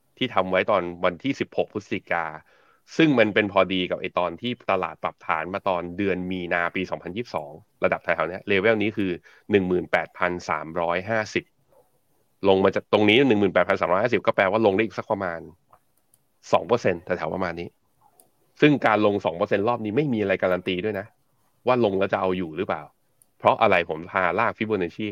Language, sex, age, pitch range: Thai, male, 20-39, 90-115 Hz